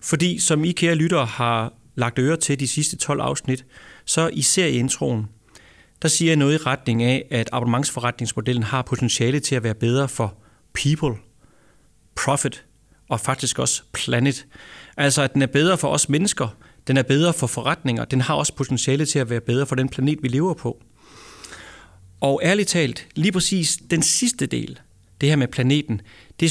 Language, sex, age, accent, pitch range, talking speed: Danish, male, 30-49, native, 120-150 Hz, 175 wpm